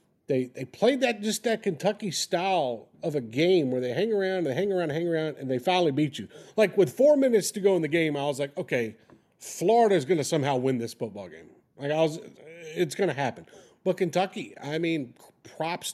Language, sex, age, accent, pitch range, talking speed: English, male, 40-59, American, 145-185 Hz, 220 wpm